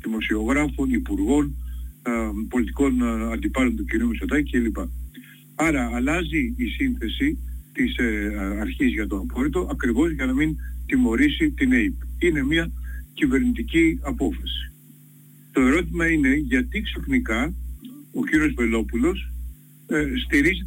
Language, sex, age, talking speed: Greek, male, 60-79, 105 wpm